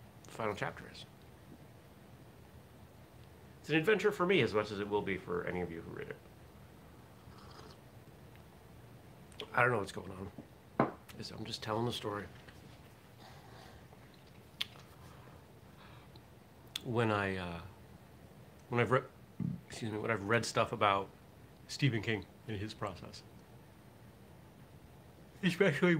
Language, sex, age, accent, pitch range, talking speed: English, male, 60-79, American, 90-130 Hz, 120 wpm